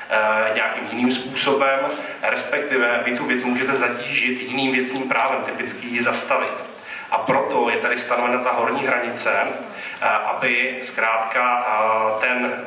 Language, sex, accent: Czech, male, native